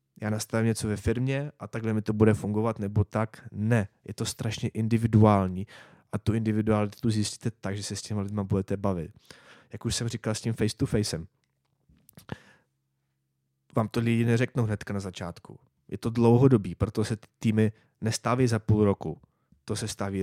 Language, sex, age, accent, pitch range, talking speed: Czech, male, 20-39, native, 100-115 Hz, 175 wpm